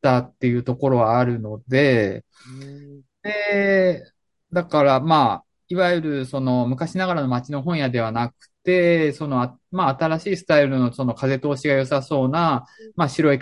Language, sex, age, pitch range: Japanese, male, 20-39, 125-180 Hz